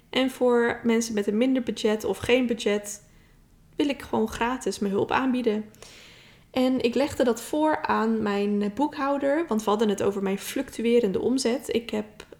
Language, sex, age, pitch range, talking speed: Dutch, female, 10-29, 200-240 Hz, 170 wpm